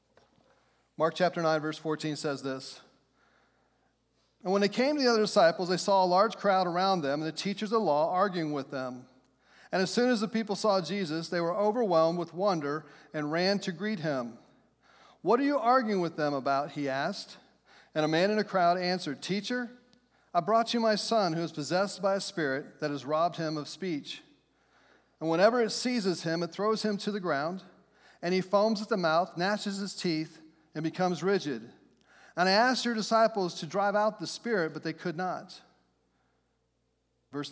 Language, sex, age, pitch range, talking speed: English, male, 40-59, 155-205 Hz, 195 wpm